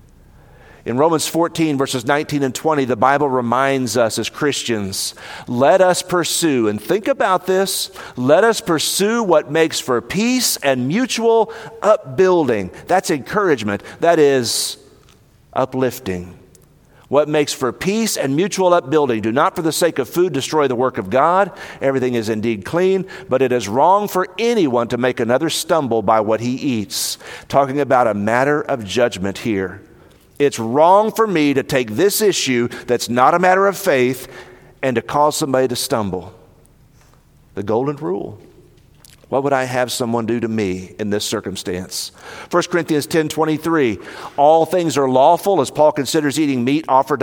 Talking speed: 165 wpm